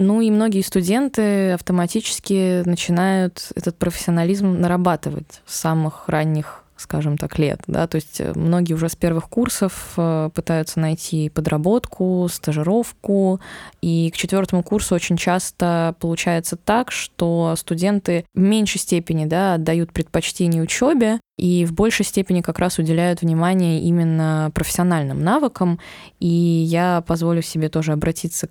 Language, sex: Russian, female